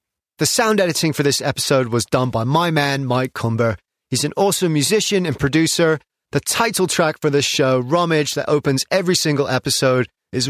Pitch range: 125-165 Hz